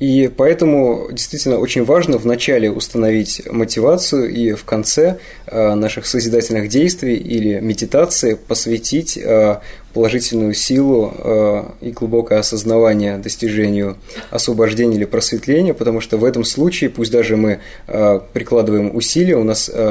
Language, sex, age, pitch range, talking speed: English, male, 20-39, 110-120 Hz, 115 wpm